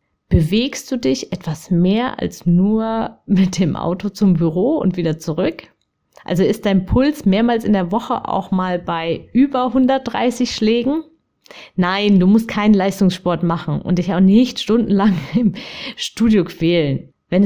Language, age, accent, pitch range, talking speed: German, 30-49, German, 170-230 Hz, 150 wpm